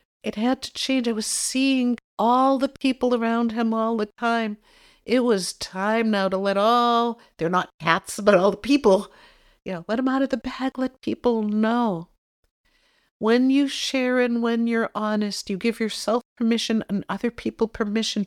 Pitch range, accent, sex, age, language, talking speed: 180-250 Hz, American, female, 50-69, English, 175 wpm